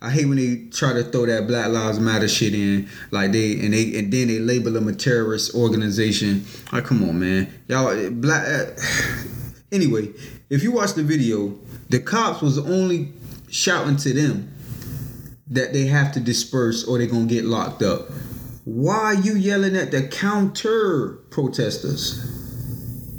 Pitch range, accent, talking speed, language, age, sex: 120-155 Hz, American, 170 wpm, English, 20-39, male